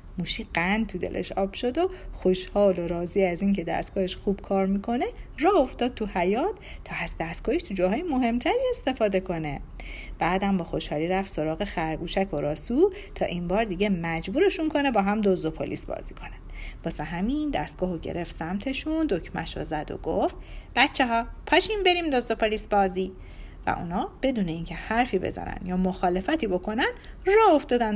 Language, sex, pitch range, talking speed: Persian, female, 180-265 Hz, 165 wpm